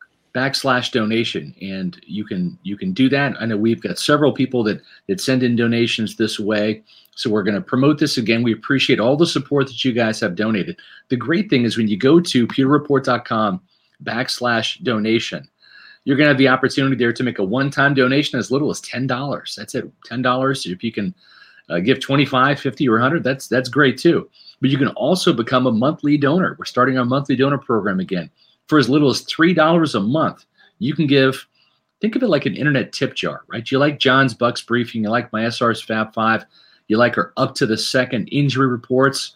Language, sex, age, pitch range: English, male, 40-59, 115-145 Hz